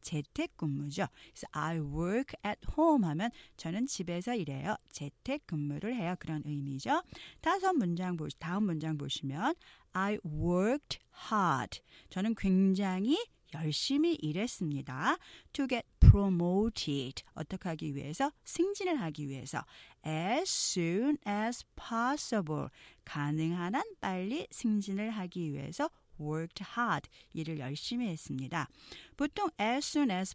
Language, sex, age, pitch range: Korean, female, 40-59, 155-245 Hz